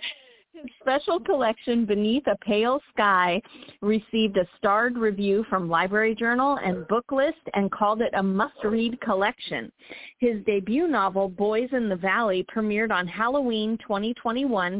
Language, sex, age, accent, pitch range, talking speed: English, female, 40-59, American, 195-255 Hz, 135 wpm